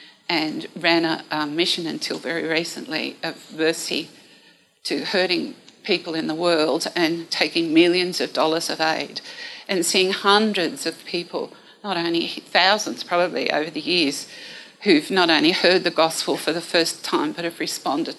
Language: English